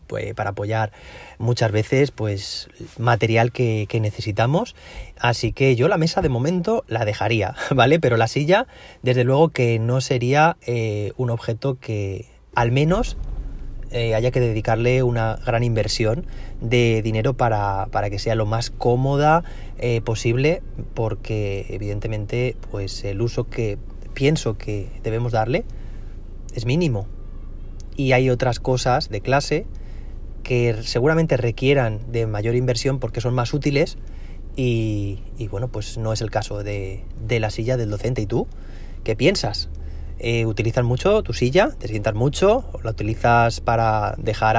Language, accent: Spanish, Spanish